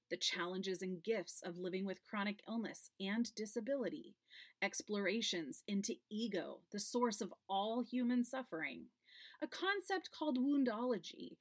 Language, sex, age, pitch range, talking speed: English, female, 30-49, 190-260 Hz, 125 wpm